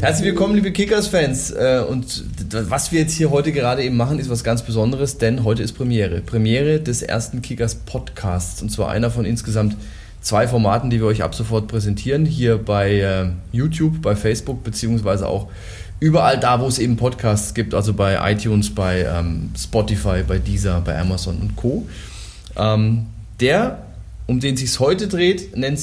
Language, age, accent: German, 20-39, German